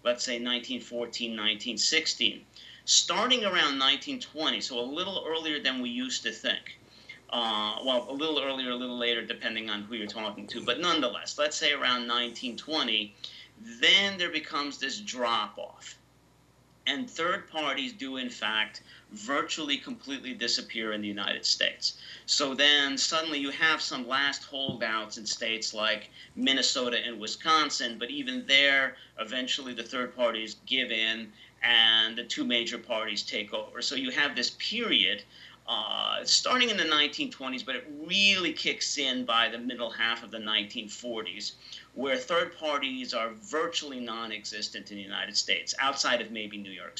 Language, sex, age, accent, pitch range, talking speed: English, male, 40-59, American, 115-145 Hz, 155 wpm